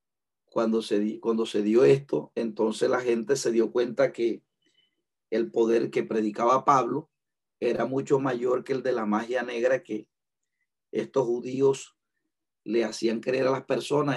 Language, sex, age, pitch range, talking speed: Spanish, male, 40-59, 115-140 Hz, 155 wpm